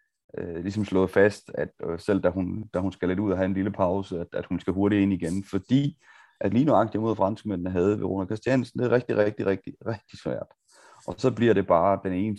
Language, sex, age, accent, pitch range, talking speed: Danish, male, 30-49, native, 95-115 Hz, 235 wpm